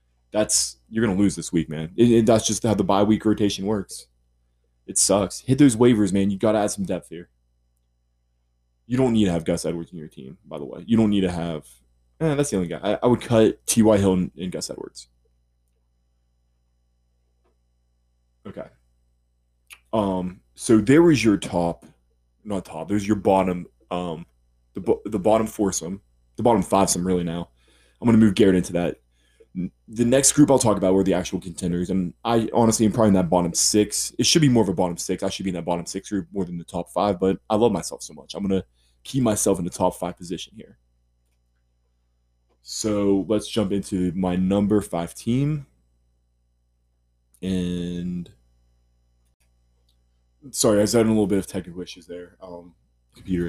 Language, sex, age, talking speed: English, male, 20-39, 195 wpm